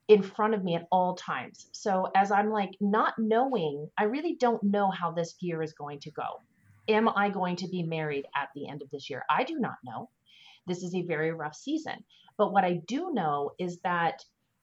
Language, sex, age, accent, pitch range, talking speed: English, female, 30-49, American, 160-210 Hz, 220 wpm